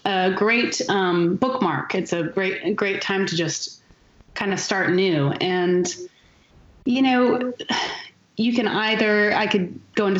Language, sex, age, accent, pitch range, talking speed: English, female, 30-49, American, 165-220 Hz, 145 wpm